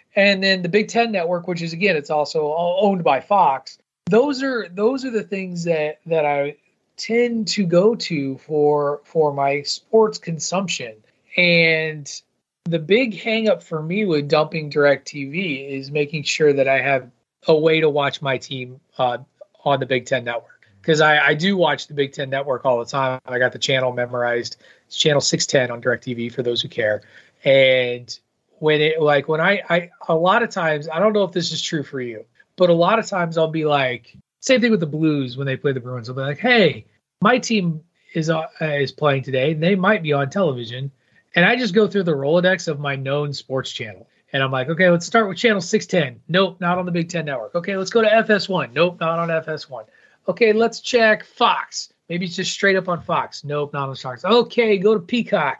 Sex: male